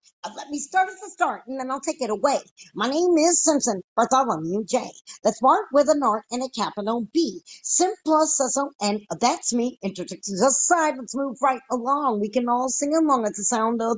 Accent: American